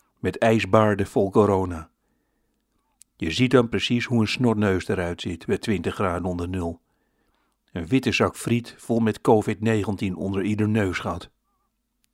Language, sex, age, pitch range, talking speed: Dutch, male, 60-79, 100-115 Hz, 140 wpm